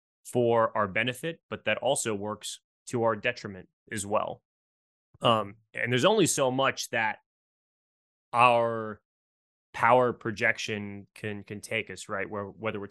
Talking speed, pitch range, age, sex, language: 140 wpm, 100-115 Hz, 20-39, male, English